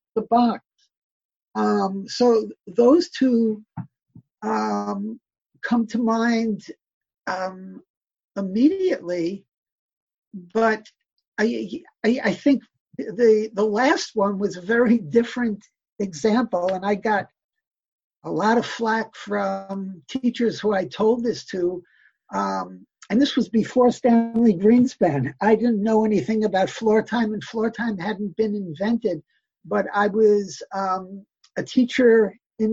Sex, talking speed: male, 125 wpm